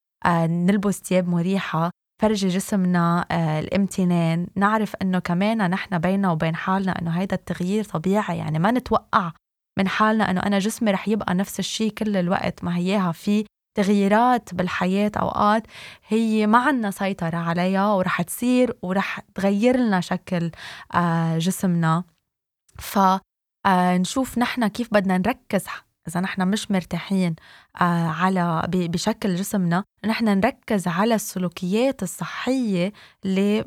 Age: 20-39